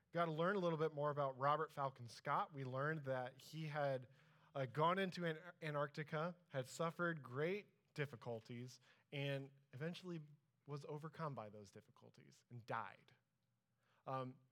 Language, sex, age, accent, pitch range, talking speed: English, male, 20-39, American, 125-155 Hz, 145 wpm